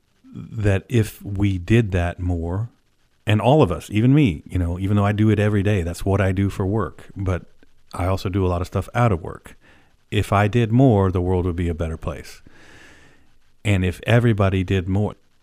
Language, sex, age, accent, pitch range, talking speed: English, male, 40-59, American, 90-105 Hz, 210 wpm